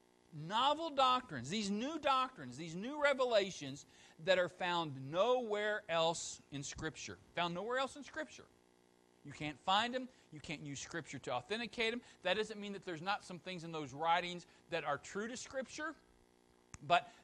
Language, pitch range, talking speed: English, 145-205 Hz, 165 wpm